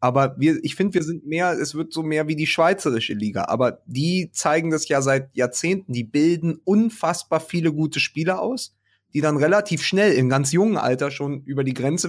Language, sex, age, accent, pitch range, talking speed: German, male, 30-49, German, 125-160 Hz, 205 wpm